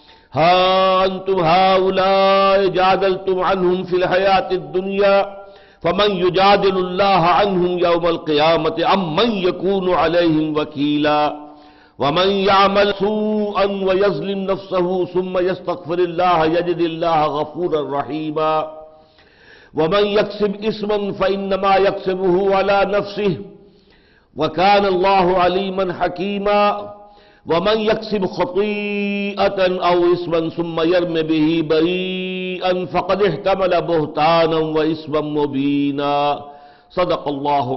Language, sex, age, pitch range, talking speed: English, male, 60-79, 145-195 Hz, 90 wpm